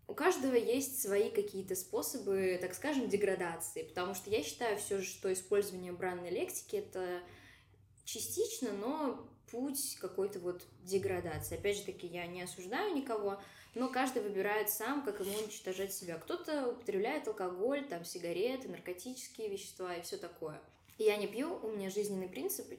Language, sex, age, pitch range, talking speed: Russian, female, 10-29, 195-265 Hz, 155 wpm